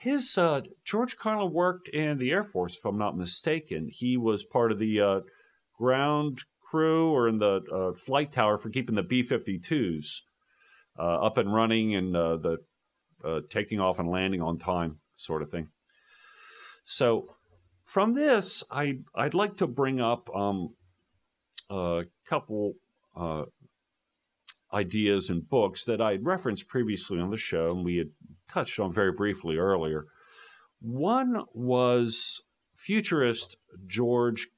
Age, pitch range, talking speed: 50-69, 90-135 Hz, 145 wpm